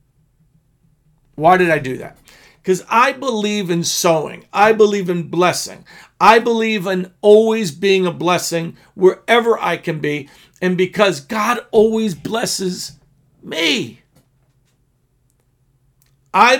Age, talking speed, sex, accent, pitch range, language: 50-69, 115 wpm, male, American, 160-220 Hz, English